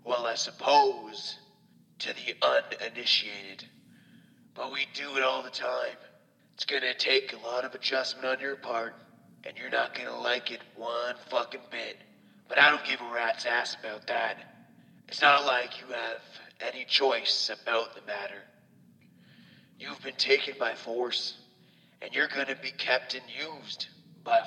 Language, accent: English, American